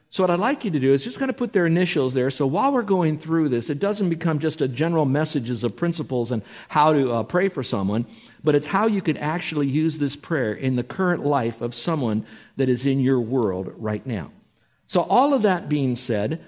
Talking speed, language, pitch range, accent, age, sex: 235 wpm, English, 125-170 Hz, American, 50-69, male